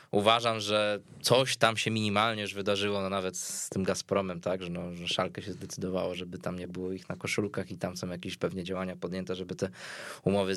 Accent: native